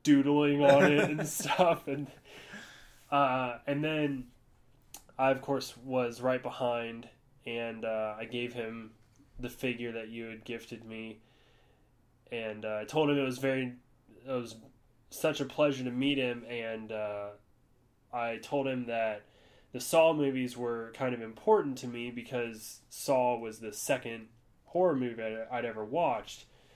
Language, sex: English, male